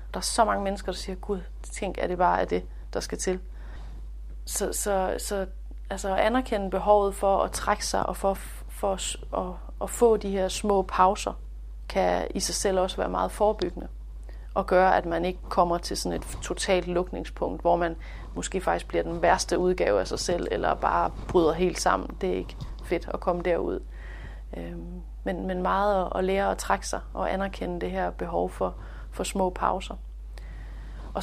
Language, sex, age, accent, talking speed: Danish, female, 30-49, native, 190 wpm